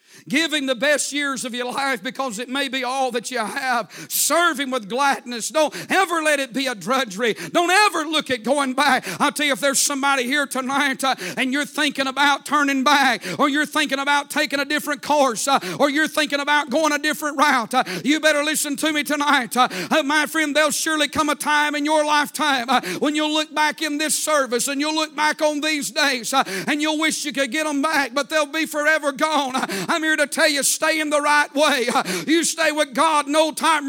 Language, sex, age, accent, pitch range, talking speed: English, male, 50-69, American, 265-315 Hz, 225 wpm